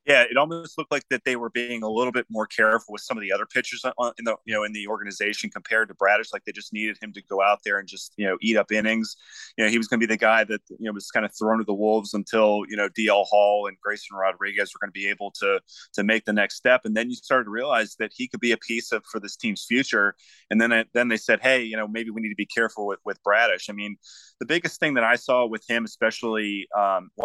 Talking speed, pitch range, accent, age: 290 wpm, 105-115 Hz, American, 30-49